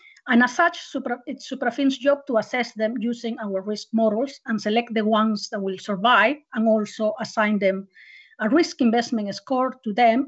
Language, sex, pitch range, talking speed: English, female, 215-275 Hz, 175 wpm